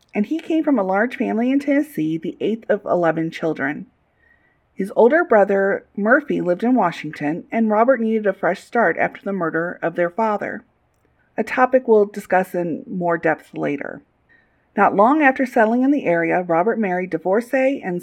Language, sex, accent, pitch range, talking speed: English, female, American, 180-255 Hz, 175 wpm